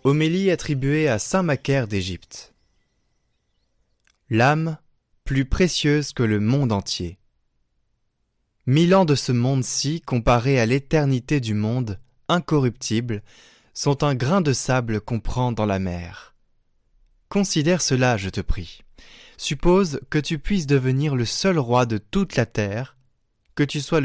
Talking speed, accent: 135 wpm, French